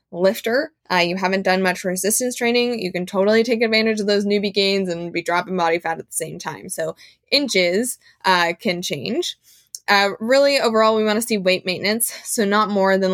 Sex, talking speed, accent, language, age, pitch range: female, 200 wpm, American, English, 20-39, 180-220 Hz